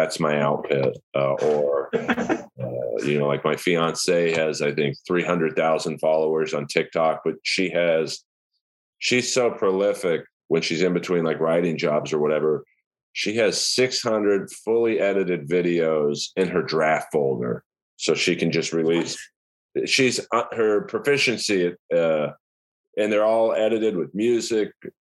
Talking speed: 140 wpm